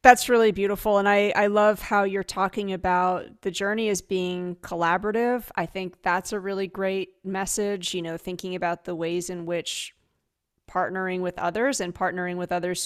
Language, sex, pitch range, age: English, female, 180-210 Hz, 30-49